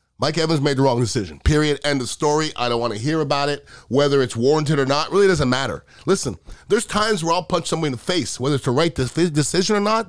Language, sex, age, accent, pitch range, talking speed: English, male, 30-49, American, 110-165 Hz, 250 wpm